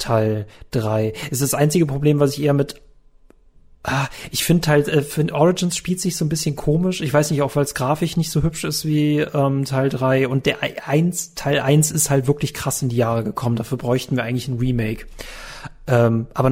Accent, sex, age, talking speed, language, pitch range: German, male, 30-49, 220 wpm, German, 130-155 Hz